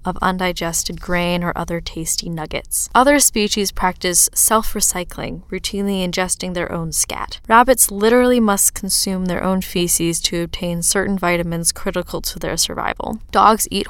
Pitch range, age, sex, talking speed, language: 170-205 Hz, 10-29, female, 140 wpm, English